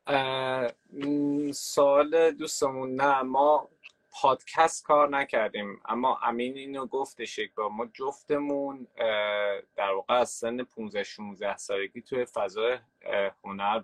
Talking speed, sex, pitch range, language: 105 wpm, male, 115-145 Hz, Persian